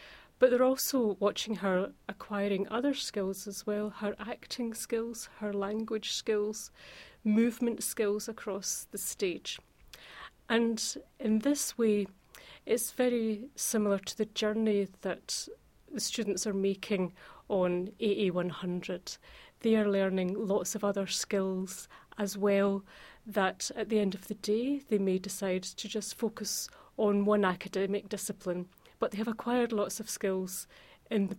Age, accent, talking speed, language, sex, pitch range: 40-59, British, 140 wpm, English, female, 195-220 Hz